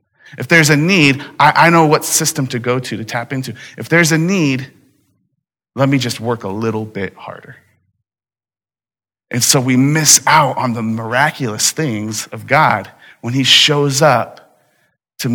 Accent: American